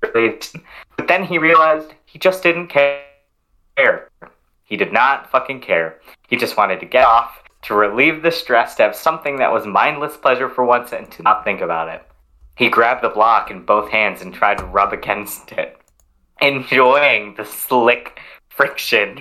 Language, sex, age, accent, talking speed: English, male, 30-49, American, 170 wpm